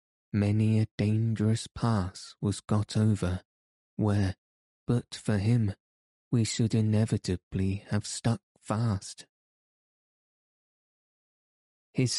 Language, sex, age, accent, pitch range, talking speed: English, male, 20-39, British, 100-115 Hz, 90 wpm